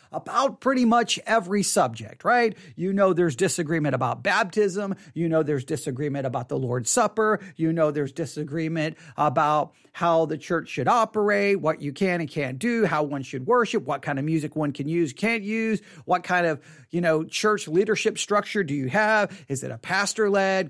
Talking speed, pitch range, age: 190 wpm, 160-220 Hz, 40-59